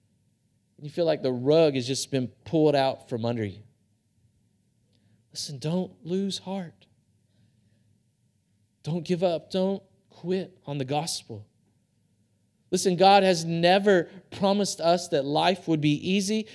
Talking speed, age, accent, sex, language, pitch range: 130 wpm, 40-59, American, male, English, 120-185 Hz